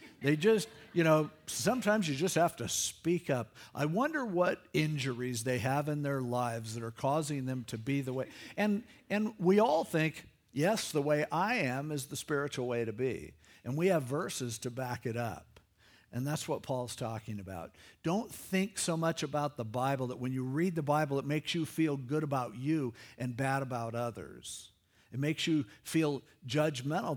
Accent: American